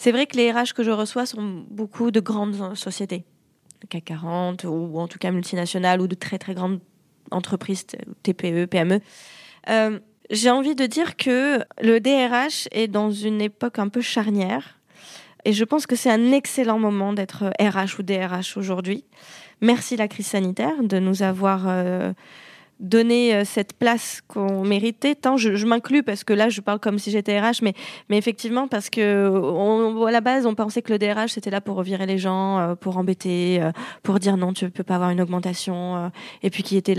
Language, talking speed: French, 190 wpm